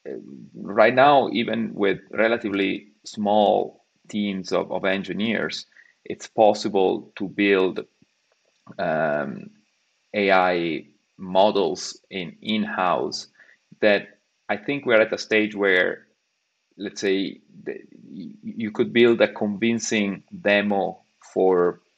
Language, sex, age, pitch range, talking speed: English, male, 30-49, 95-110 Hz, 95 wpm